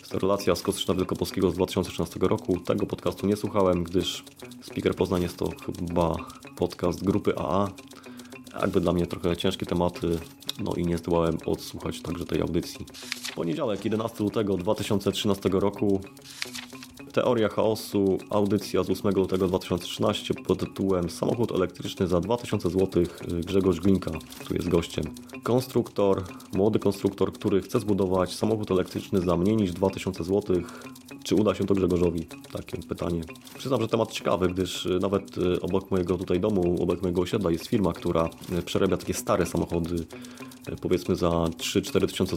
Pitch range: 90-110 Hz